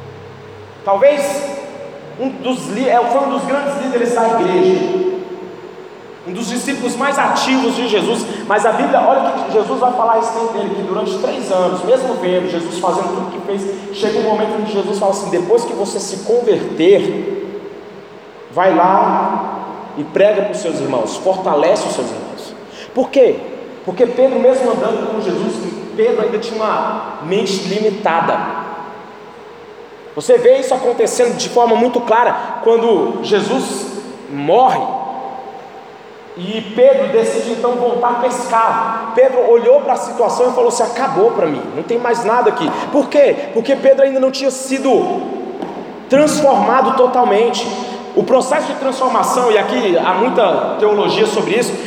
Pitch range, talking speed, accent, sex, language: 210-270 Hz, 155 wpm, Brazilian, male, Portuguese